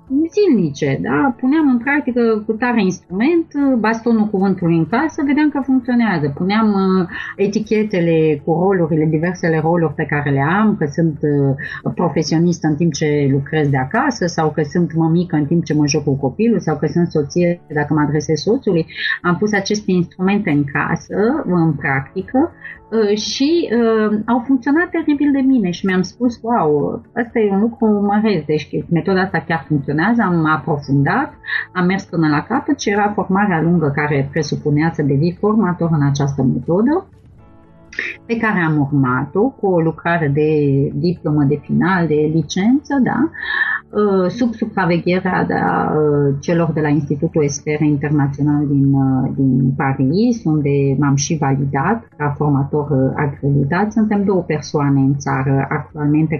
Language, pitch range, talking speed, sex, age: Romanian, 150-210 Hz, 150 wpm, female, 30-49